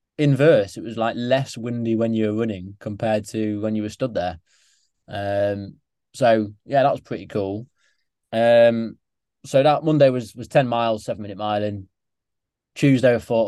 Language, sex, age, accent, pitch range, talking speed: English, male, 20-39, British, 95-115 Hz, 175 wpm